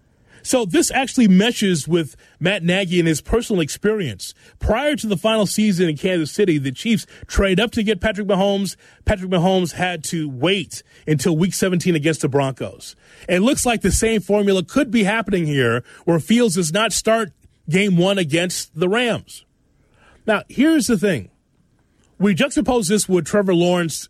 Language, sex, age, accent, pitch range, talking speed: English, male, 30-49, American, 160-220 Hz, 170 wpm